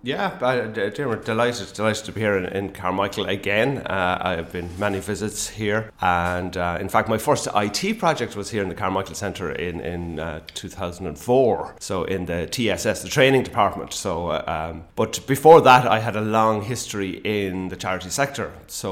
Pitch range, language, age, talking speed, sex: 95-125 Hz, English, 30-49, 185 wpm, male